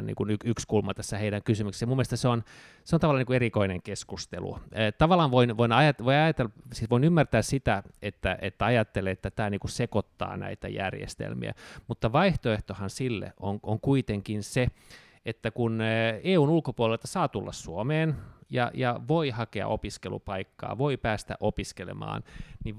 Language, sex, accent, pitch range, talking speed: Finnish, male, native, 105-125 Hz, 155 wpm